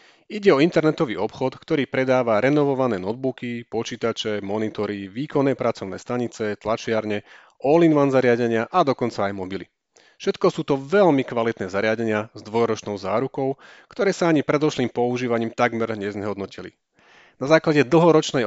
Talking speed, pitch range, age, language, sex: 125 wpm, 110-140 Hz, 30-49, Slovak, male